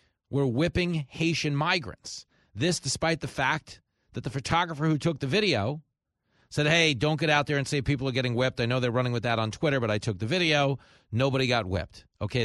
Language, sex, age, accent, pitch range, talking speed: English, male, 40-59, American, 115-180 Hz, 210 wpm